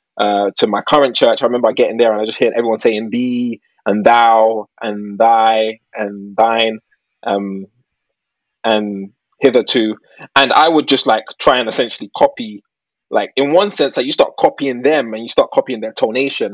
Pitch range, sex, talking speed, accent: 110-185 Hz, male, 180 wpm, British